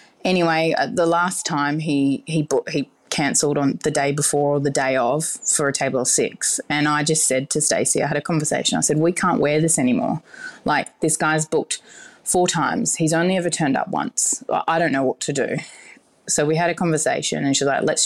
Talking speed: 220 wpm